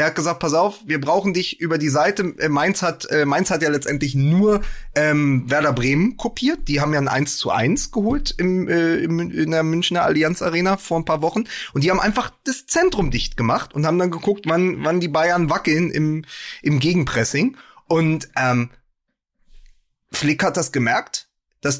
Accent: German